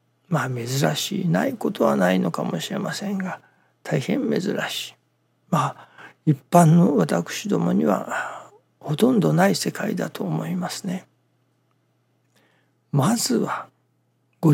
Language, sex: Japanese, male